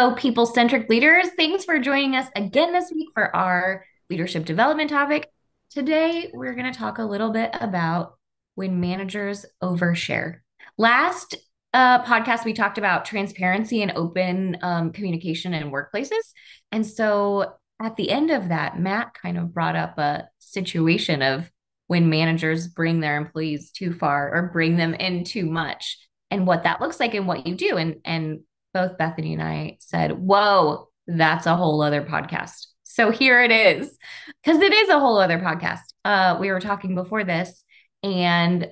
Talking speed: 165 wpm